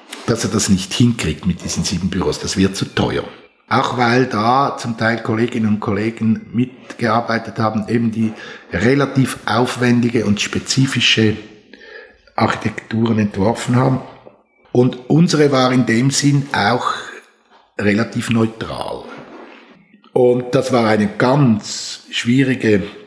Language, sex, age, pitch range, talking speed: German, male, 60-79, 100-125 Hz, 120 wpm